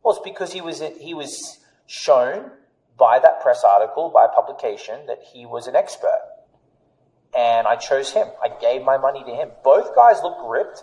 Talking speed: 195 wpm